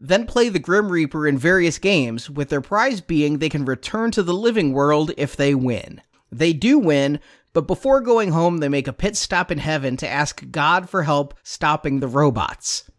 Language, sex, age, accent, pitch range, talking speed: English, male, 30-49, American, 145-190 Hz, 205 wpm